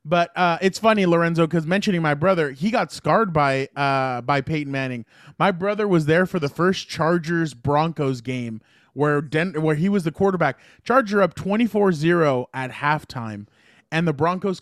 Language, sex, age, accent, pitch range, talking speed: English, male, 20-39, American, 150-185 Hz, 170 wpm